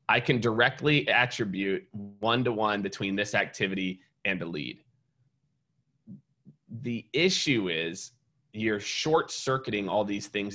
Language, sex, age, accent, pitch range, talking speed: English, male, 30-49, American, 105-130 Hz, 120 wpm